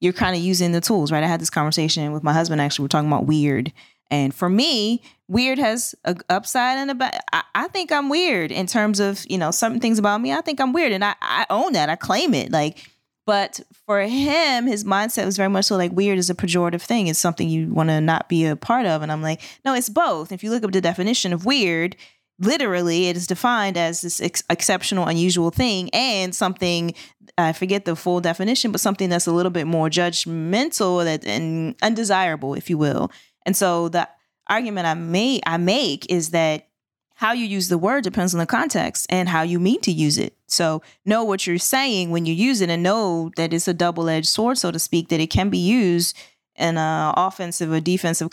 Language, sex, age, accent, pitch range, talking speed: English, female, 20-39, American, 165-215 Hz, 220 wpm